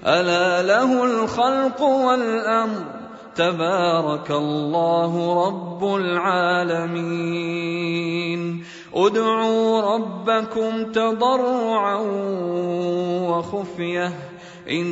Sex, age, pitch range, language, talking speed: male, 30-49, 170-220 Hz, Arabic, 50 wpm